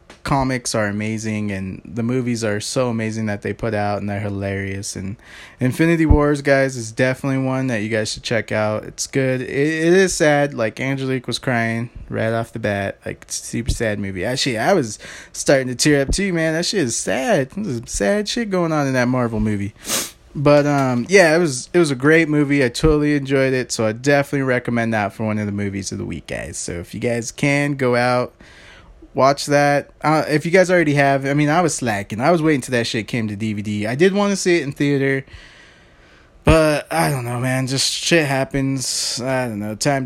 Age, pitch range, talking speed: 20-39, 110-140 Hz, 220 wpm